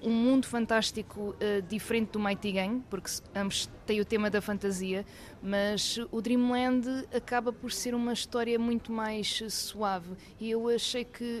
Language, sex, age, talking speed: Portuguese, female, 20-39, 160 wpm